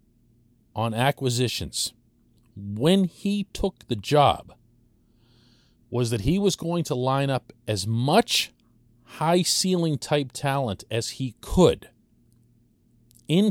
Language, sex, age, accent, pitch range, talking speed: English, male, 40-59, American, 105-135 Hz, 100 wpm